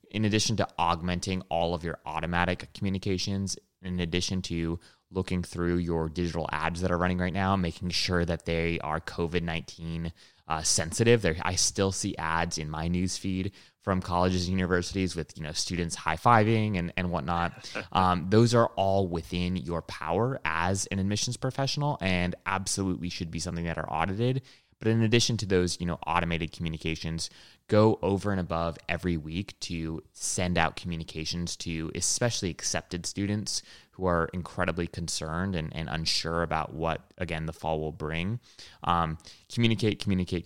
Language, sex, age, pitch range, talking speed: English, male, 20-39, 85-95 Hz, 160 wpm